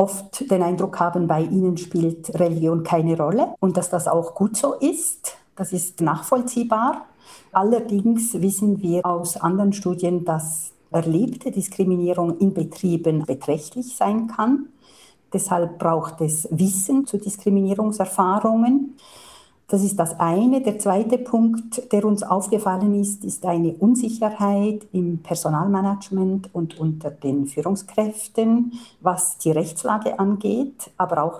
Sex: female